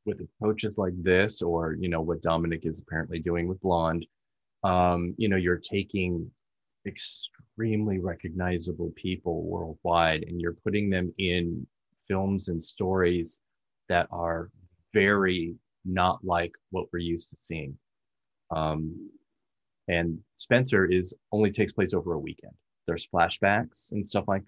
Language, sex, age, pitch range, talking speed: English, male, 30-49, 85-100 Hz, 135 wpm